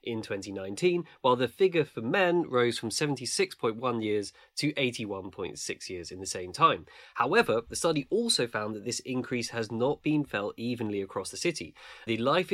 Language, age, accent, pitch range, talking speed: English, 20-39, British, 100-135 Hz, 170 wpm